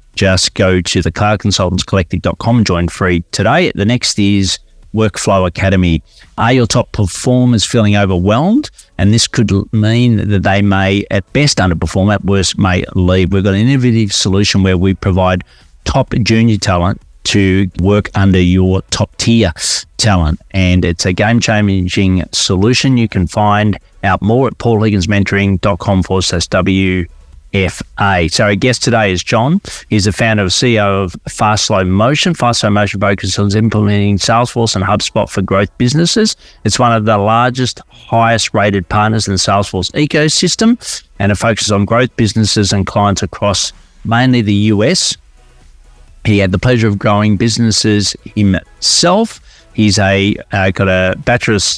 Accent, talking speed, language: Australian, 155 wpm, English